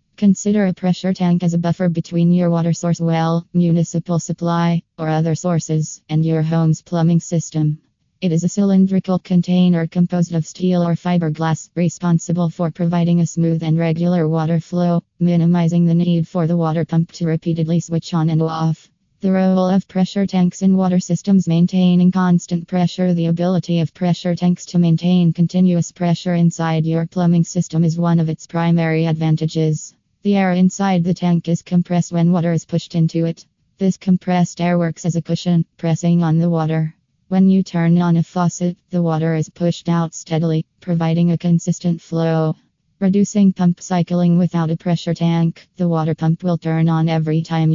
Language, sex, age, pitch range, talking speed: English, female, 20-39, 165-180 Hz, 175 wpm